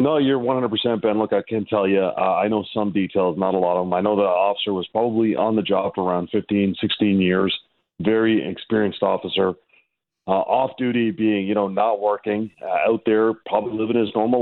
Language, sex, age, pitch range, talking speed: English, male, 40-59, 100-120 Hz, 210 wpm